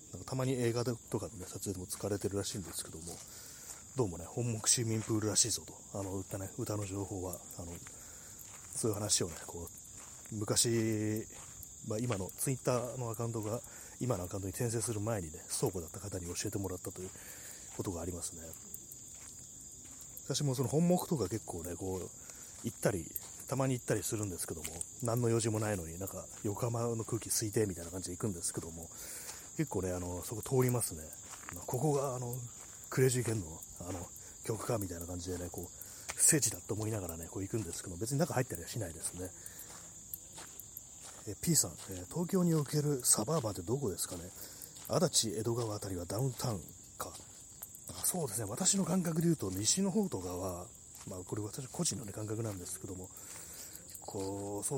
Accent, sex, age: native, male, 30-49